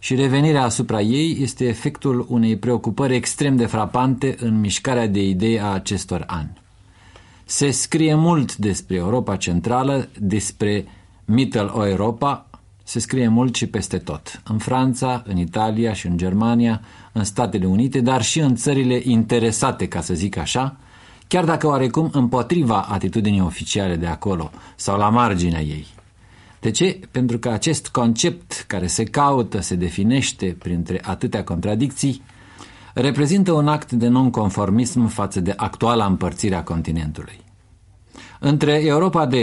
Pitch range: 100-125 Hz